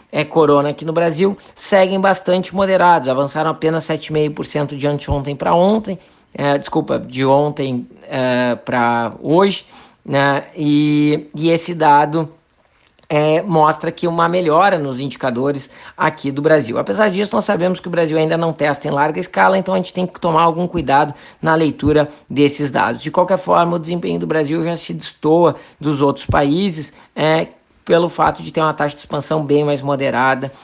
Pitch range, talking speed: 140-170 Hz, 170 wpm